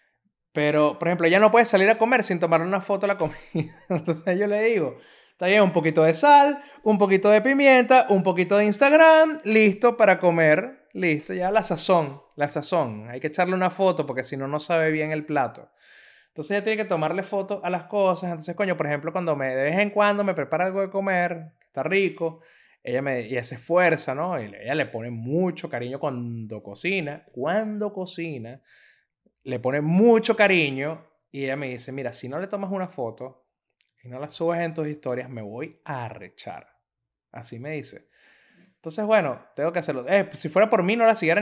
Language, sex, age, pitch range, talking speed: Spanish, male, 20-39, 145-200 Hz, 205 wpm